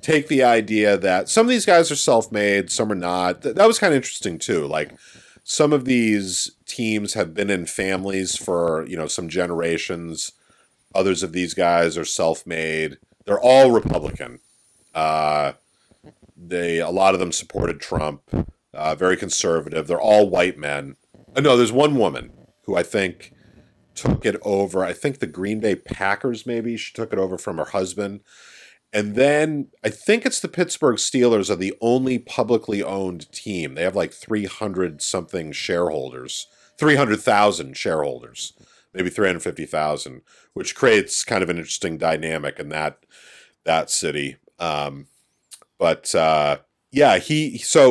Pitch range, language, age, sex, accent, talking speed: 85-125 Hz, English, 40-59, male, American, 155 wpm